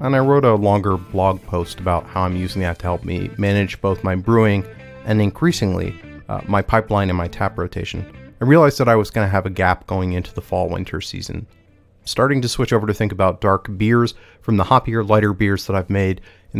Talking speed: 225 wpm